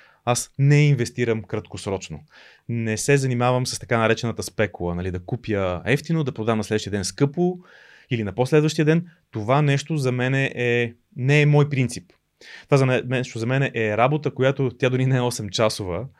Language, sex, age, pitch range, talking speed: Bulgarian, male, 30-49, 110-140 Hz, 180 wpm